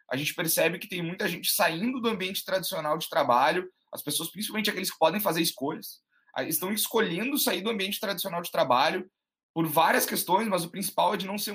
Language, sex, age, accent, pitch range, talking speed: Portuguese, male, 20-39, Brazilian, 145-200 Hz, 205 wpm